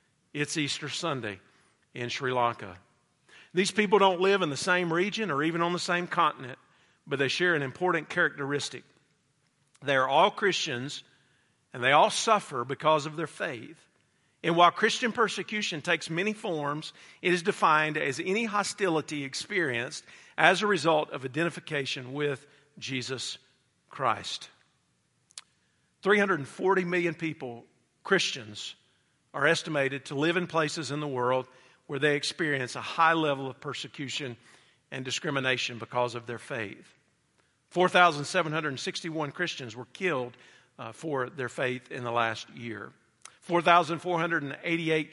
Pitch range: 135-175 Hz